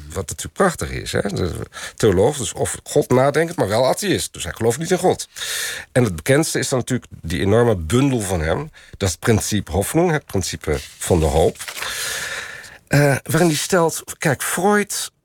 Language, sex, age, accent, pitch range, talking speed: Dutch, male, 50-69, Belgian, 95-145 Hz, 185 wpm